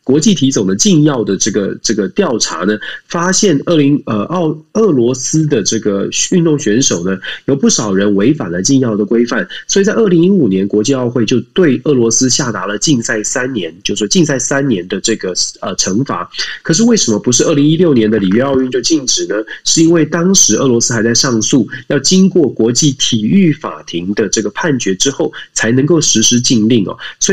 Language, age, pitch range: Chinese, 20-39, 110-160 Hz